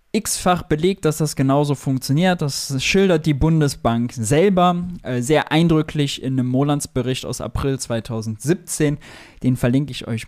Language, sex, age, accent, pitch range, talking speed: German, male, 20-39, German, 125-155 Hz, 140 wpm